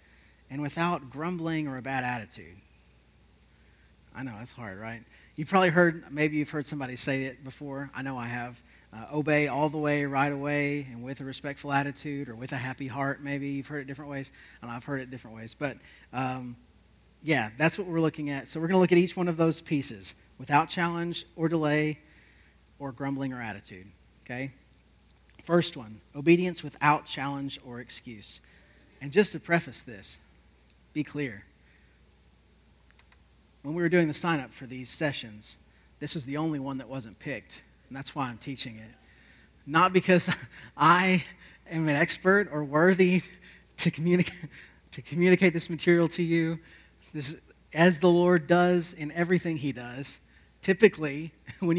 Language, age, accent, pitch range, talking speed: English, 40-59, American, 125-165 Hz, 170 wpm